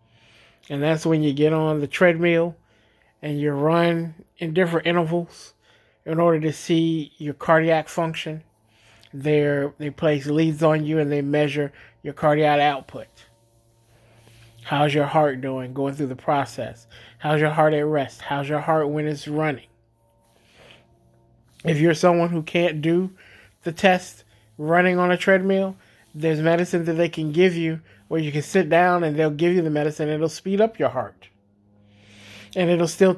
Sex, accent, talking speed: male, American, 160 wpm